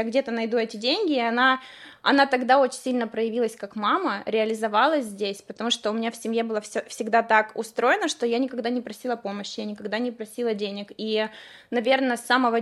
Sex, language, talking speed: female, Russian, 190 wpm